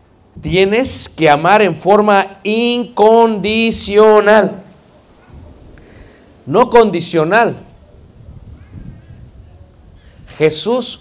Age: 50-69